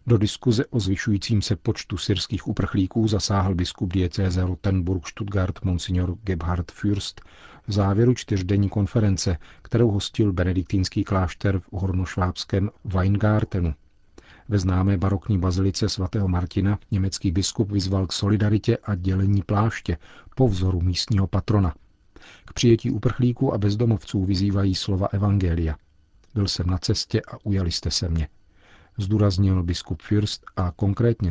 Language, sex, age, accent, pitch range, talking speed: Czech, male, 40-59, native, 90-105 Hz, 130 wpm